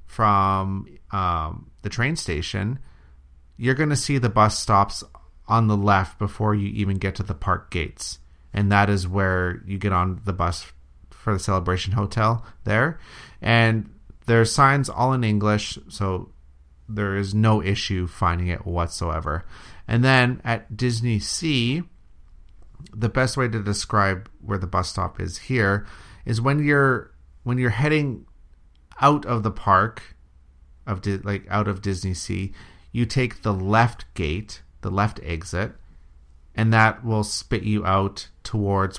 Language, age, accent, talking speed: English, 30-49, American, 155 wpm